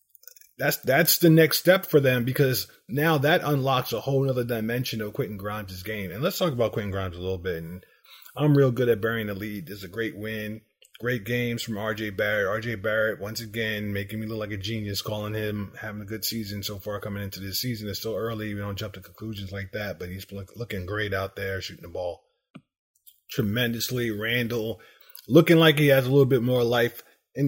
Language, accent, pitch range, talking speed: English, American, 105-135 Hz, 210 wpm